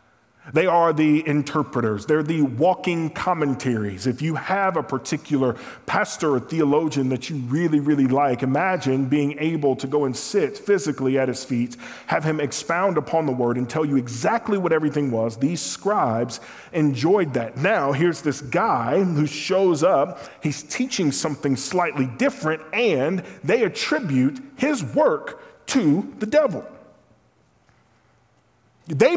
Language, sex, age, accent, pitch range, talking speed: English, male, 40-59, American, 135-185 Hz, 145 wpm